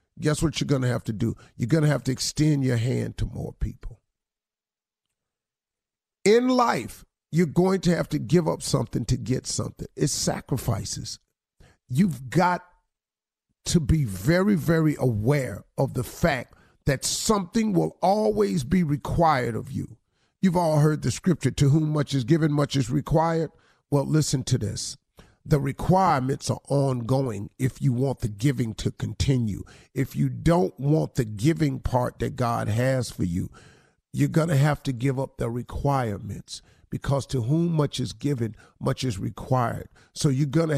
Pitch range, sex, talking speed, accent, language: 120-155 Hz, male, 170 wpm, American, English